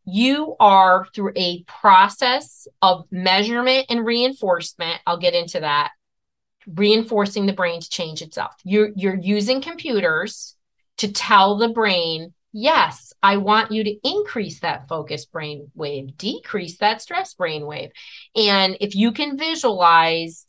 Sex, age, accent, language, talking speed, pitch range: female, 30-49, American, English, 140 wpm, 170-225 Hz